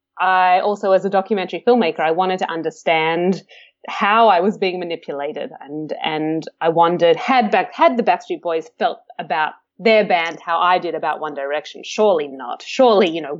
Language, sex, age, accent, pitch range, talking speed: English, female, 20-39, Australian, 170-225 Hz, 180 wpm